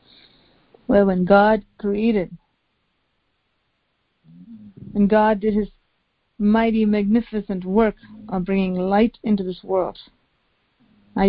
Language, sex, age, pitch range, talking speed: English, female, 50-69, 200-240 Hz, 95 wpm